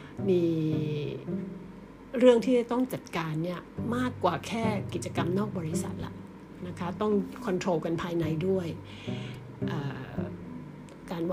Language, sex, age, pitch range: Thai, female, 60-79, 165-205 Hz